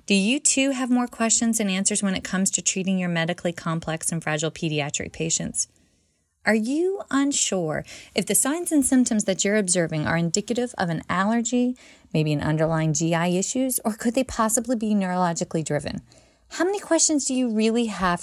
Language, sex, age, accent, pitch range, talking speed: English, female, 20-39, American, 170-245 Hz, 180 wpm